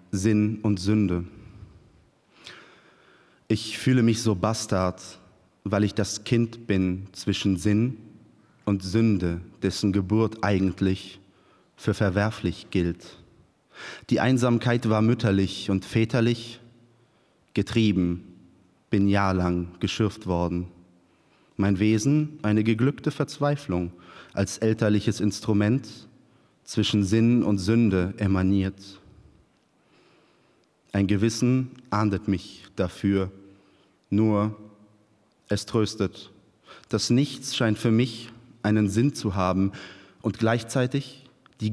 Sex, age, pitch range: male, 30-49, 95-115 Hz